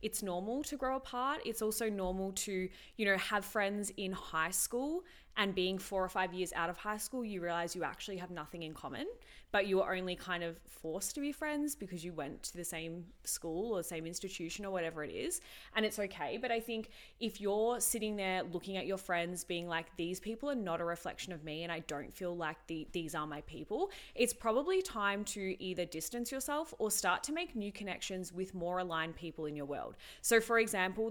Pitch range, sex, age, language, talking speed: 175-220 Hz, female, 20-39, English, 220 wpm